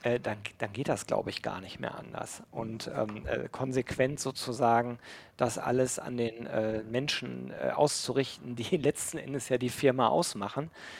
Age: 40-59